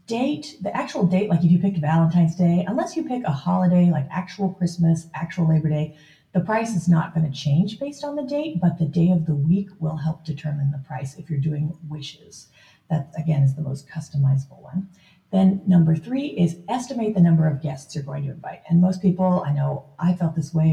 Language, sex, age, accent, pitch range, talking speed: English, female, 40-59, American, 155-200 Hz, 215 wpm